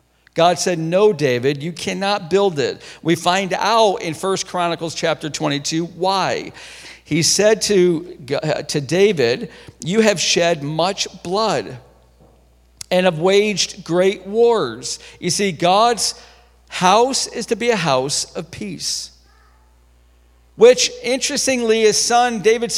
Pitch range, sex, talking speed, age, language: 165-230 Hz, male, 125 wpm, 50-69, English